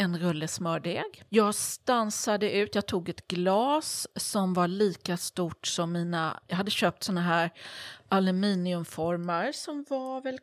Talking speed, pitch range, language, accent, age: 140 wpm, 175-215 Hz, English, Swedish, 30-49